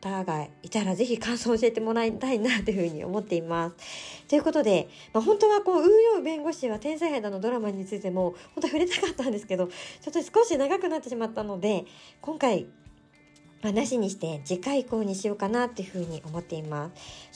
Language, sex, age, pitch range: Japanese, male, 40-59, 190-280 Hz